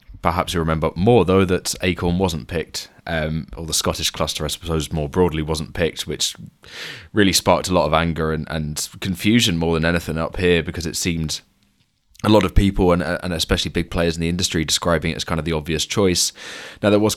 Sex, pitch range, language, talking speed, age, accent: male, 80-100 Hz, English, 215 wpm, 20-39, British